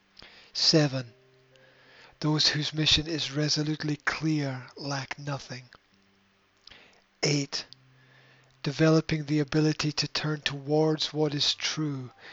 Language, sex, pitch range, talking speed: English, male, 130-155 Hz, 90 wpm